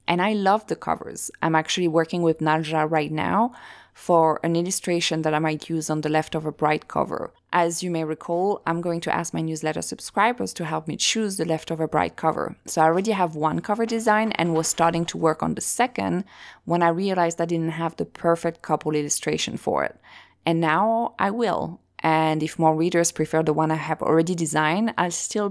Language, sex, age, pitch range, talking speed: English, female, 20-39, 155-175 Hz, 205 wpm